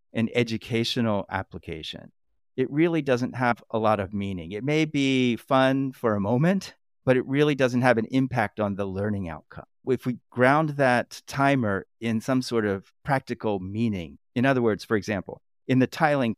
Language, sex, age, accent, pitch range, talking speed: English, male, 50-69, American, 105-135 Hz, 175 wpm